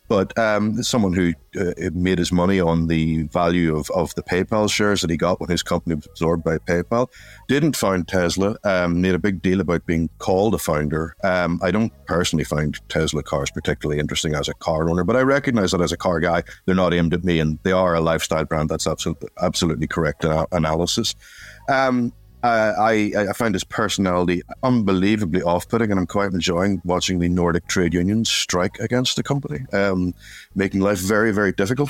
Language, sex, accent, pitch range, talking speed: English, male, Irish, 85-105 Hz, 195 wpm